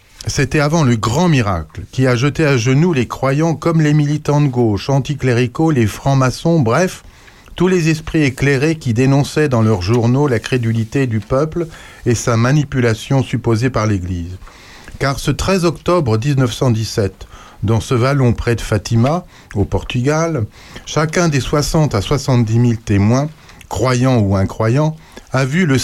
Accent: French